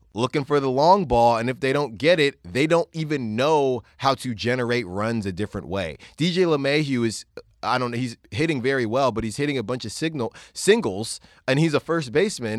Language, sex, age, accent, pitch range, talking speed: English, male, 20-39, American, 105-145 Hz, 215 wpm